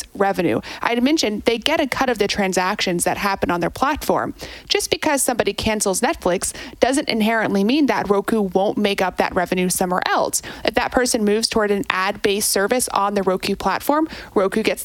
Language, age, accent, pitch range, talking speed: English, 30-49, American, 190-235 Hz, 190 wpm